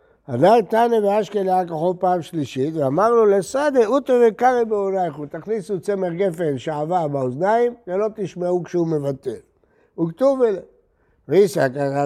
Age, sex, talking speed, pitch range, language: 60-79, male, 120 wpm, 140-200 Hz, Hebrew